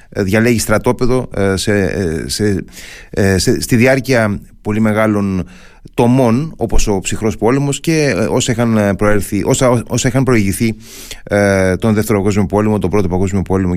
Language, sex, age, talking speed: Greek, male, 30-49, 105 wpm